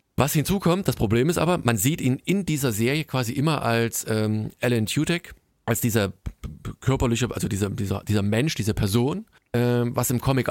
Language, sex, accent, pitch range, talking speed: German, male, German, 110-130 Hz, 195 wpm